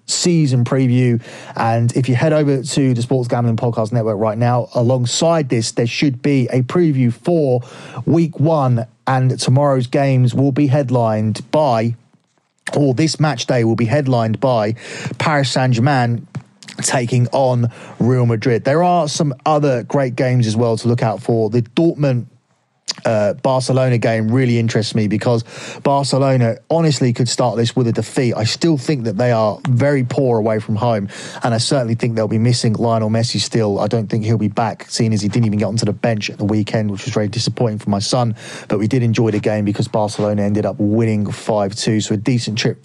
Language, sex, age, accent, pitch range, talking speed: English, male, 30-49, British, 115-140 Hz, 190 wpm